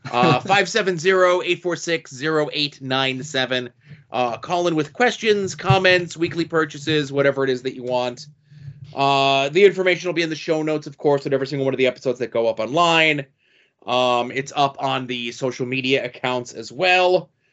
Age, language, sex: 30-49, English, male